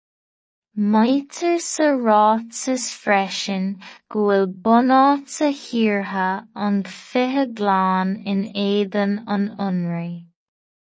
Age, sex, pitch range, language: 20-39, female, 195-230 Hz, English